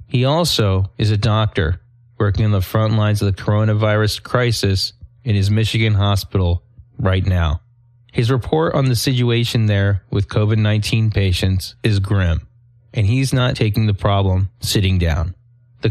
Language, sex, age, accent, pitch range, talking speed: English, male, 30-49, American, 100-120 Hz, 150 wpm